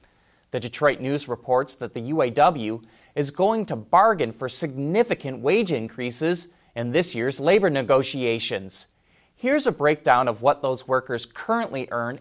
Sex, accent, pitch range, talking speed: male, American, 125-165 Hz, 145 wpm